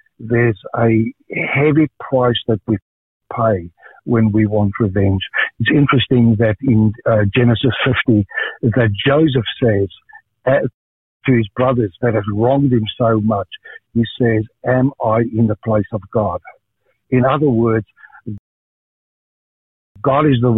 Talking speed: 135 wpm